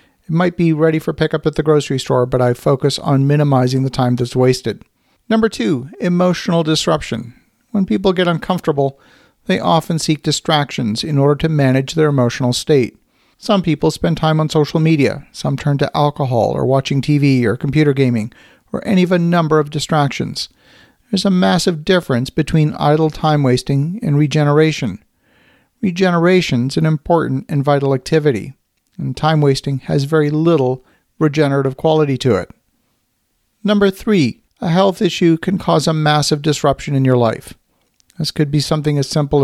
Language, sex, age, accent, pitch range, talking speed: English, male, 50-69, American, 140-165 Hz, 160 wpm